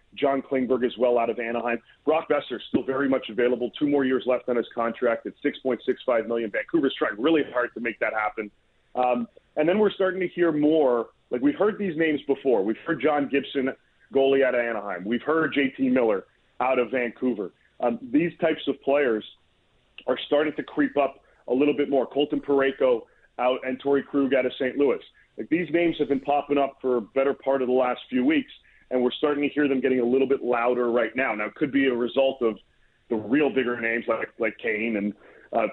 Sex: male